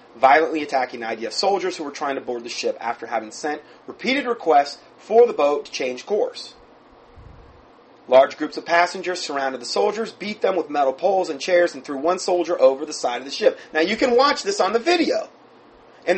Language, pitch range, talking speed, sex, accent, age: English, 130-180 Hz, 205 wpm, male, American, 30-49